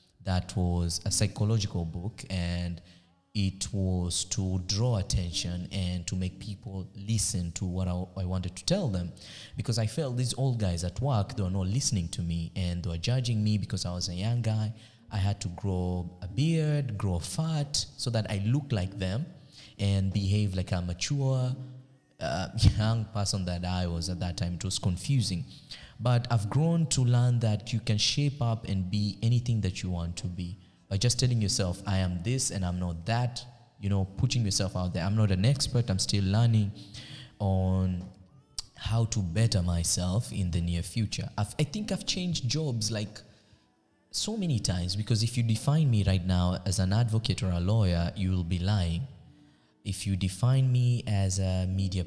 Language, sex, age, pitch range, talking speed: English, male, 20-39, 95-120 Hz, 190 wpm